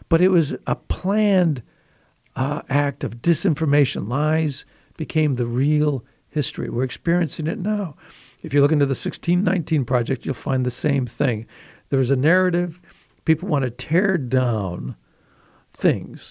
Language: English